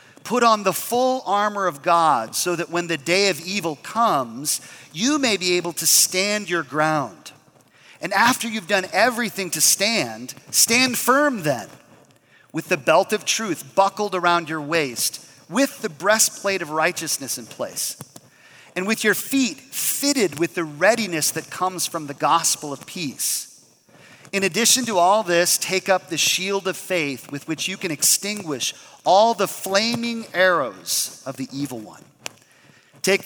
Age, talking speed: 40-59, 160 wpm